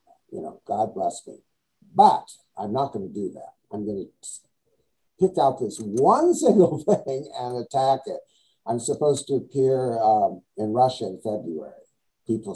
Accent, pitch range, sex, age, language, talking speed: American, 125-210 Hz, male, 60-79, English, 160 wpm